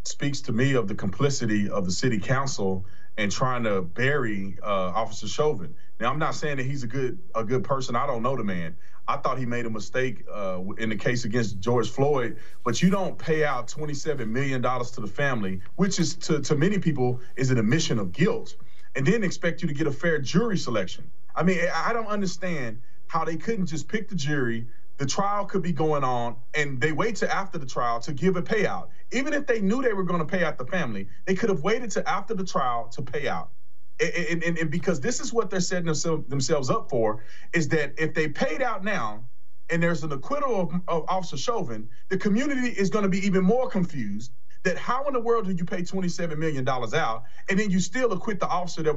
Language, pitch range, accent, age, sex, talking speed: English, 125-185 Hz, American, 30-49, male, 230 wpm